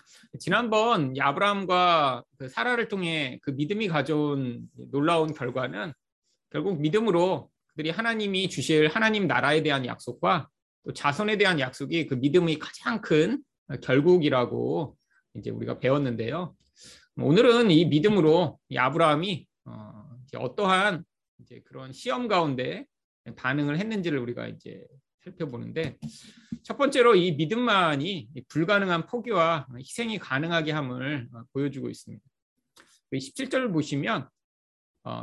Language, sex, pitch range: Korean, male, 135-190 Hz